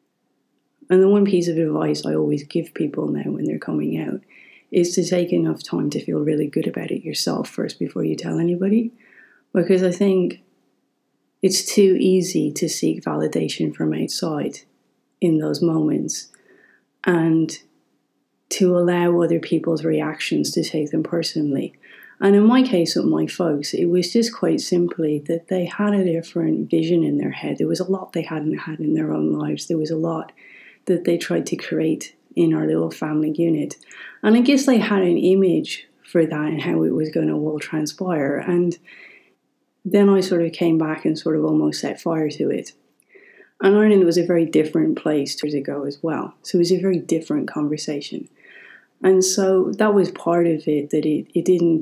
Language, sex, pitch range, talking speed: English, female, 150-185 Hz, 190 wpm